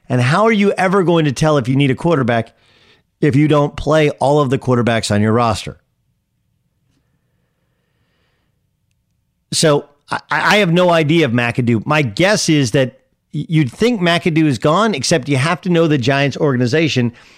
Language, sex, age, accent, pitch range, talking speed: English, male, 40-59, American, 125-165 Hz, 165 wpm